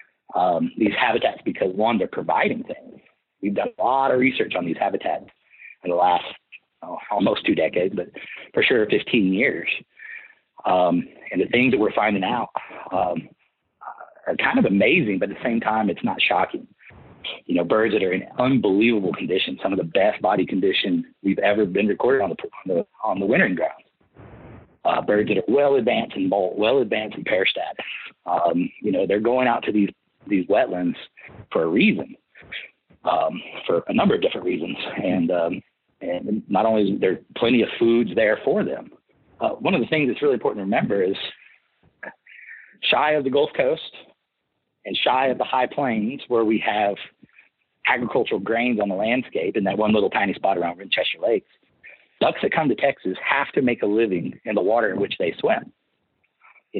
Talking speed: 185 wpm